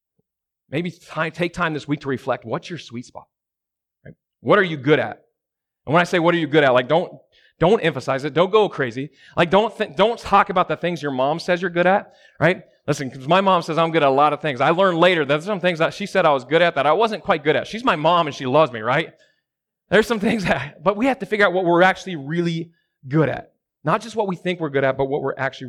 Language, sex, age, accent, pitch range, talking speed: English, male, 30-49, American, 135-175 Hz, 275 wpm